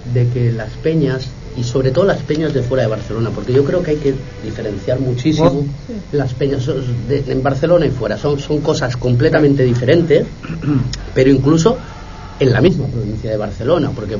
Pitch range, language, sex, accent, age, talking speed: 110-140 Hz, Spanish, male, Spanish, 40-59, 175 wpm